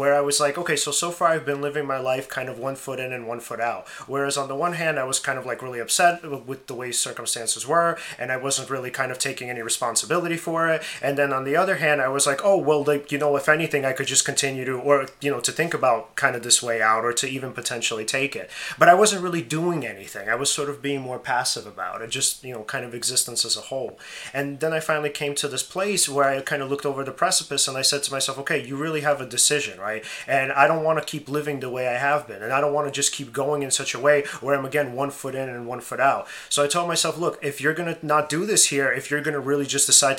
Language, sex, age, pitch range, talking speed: English, male, 30-49, 130-150 Hz, 285 wpm